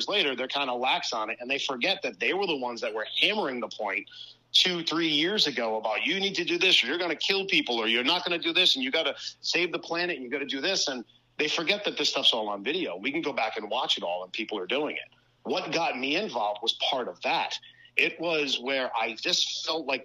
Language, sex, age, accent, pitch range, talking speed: English, male, 40-59, American, 120-150 Hz, 280 wpm